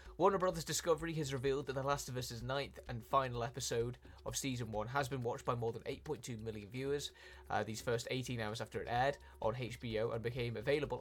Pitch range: 115-155 Hz